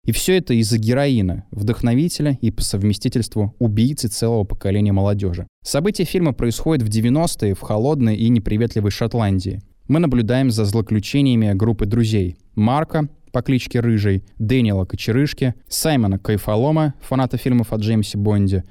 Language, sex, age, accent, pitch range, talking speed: Russian, male, 20-39, native, 105-130 Hz, 135 wpm